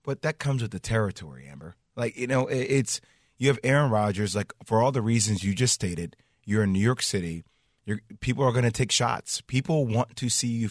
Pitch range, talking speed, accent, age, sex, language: 105-130 Hz, 220 wpm, American, 30-49, male, English